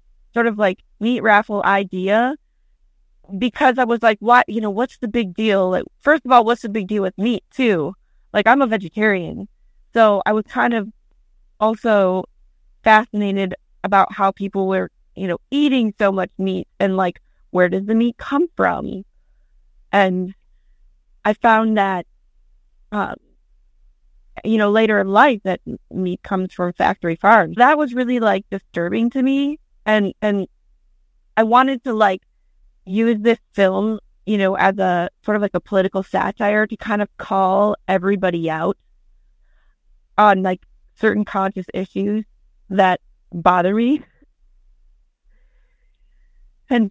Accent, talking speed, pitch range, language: American, 145 wpm, 180-220 Hz, English